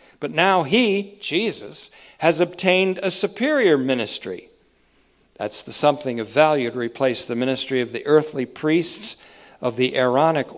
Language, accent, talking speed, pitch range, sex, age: English, American, 140 wpm, 120-170 Hz, male, 50-69